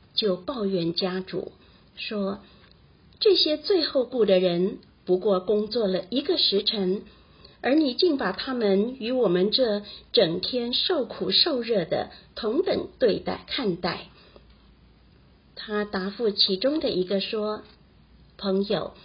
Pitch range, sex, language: 190-265 Hz, female, Chinese